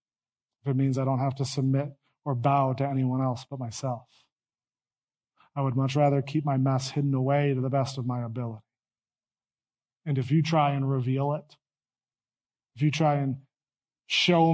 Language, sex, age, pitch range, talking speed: English, male, 30-49, 135-195 Hz, 175 wpm